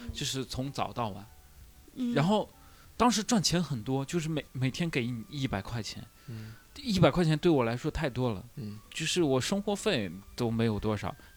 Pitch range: 110-160 Hz